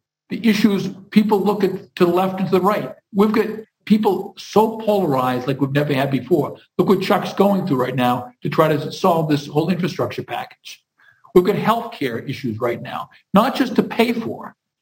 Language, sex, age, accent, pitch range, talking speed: English, male, 50-69, American, 150-210 Hz, 200 wpm